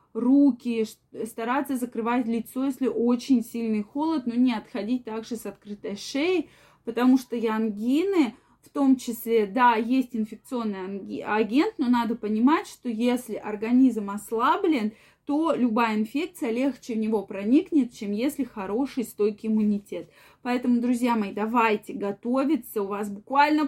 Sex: female